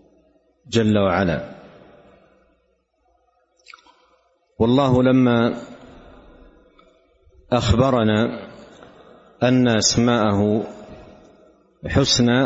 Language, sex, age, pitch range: Arabic, male, 50-69, 110-125 Hz